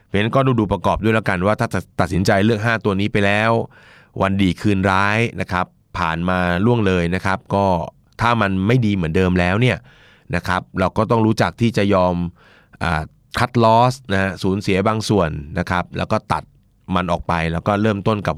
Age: 20-39